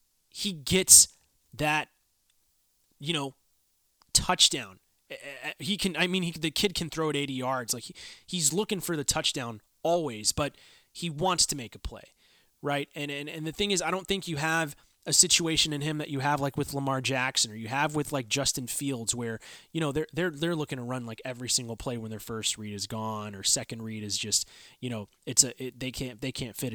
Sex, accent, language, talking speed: male, American, English, 220 wpm